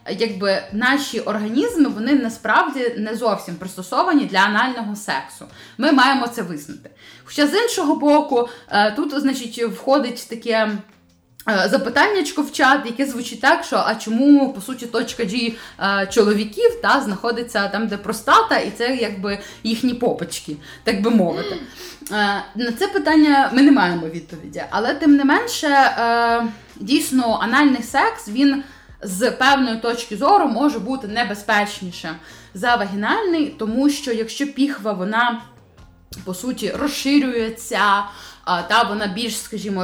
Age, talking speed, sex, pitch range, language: 20-39, 130 wpm, female, 205-275 Hz, Ukrainian